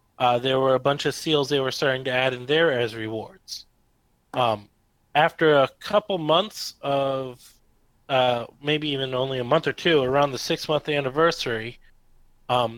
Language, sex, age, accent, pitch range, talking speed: English, male, 30-49, American, 120-145 Hz, 165 wpm